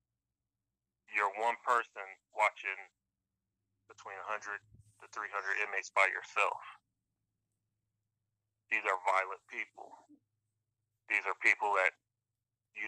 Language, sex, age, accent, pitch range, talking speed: English, male, 30-49, American, 100-110 Hz, 100 wpm